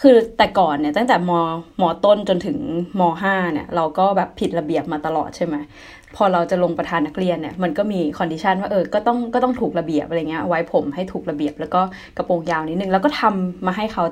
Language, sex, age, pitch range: Thai, female, 20-39, 160-210 Hz